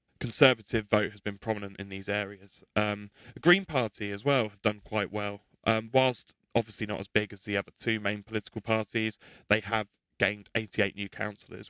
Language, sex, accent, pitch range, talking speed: English, male, British, 105-120 Hz, 190 wpm